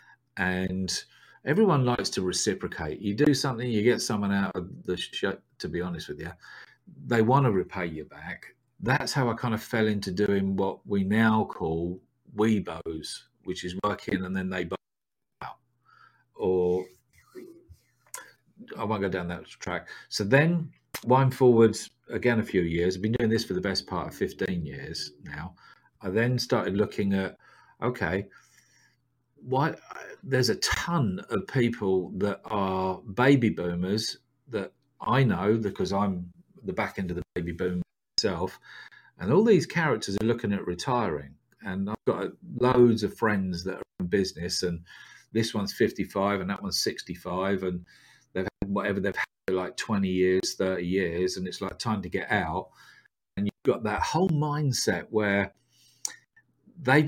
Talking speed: 165 wpm